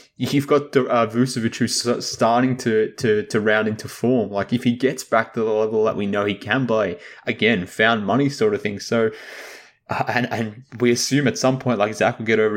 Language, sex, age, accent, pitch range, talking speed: English, male, 20-39, Australian, 100-125 Hz, 220 wpm